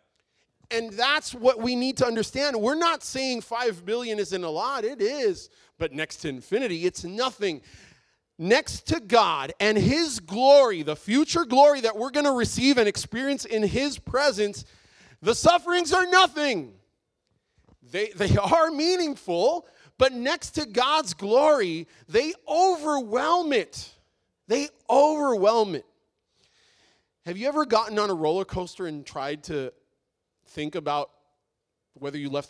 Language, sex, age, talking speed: English, male, 30-49, 145 wpm